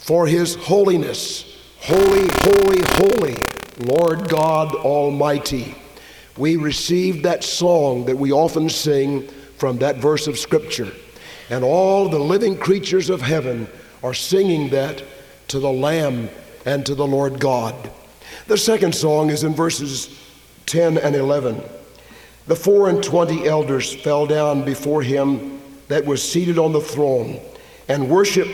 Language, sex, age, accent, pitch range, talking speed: English, male, 50-69, American, 140-170 Hz, 140 wpm